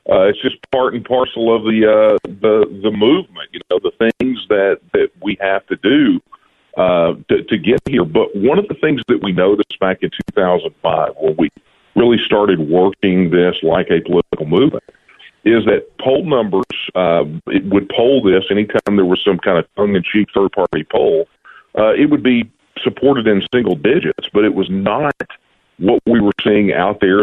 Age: 50-69